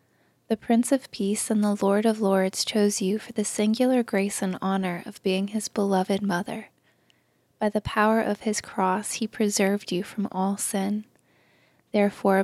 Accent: American